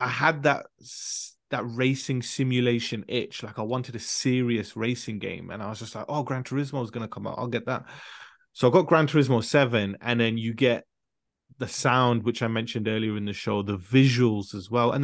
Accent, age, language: British, 30-49, English